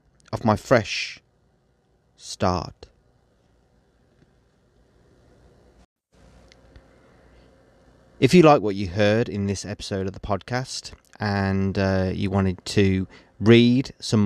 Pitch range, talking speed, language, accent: 95-110 Hz, 95 wpm, English, British